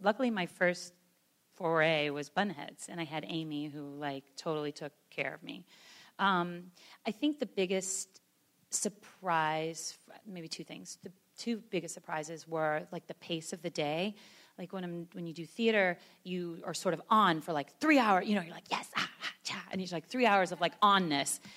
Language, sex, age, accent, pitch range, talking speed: English, female, 30-49, American, 155-205 Hz, 190 wpm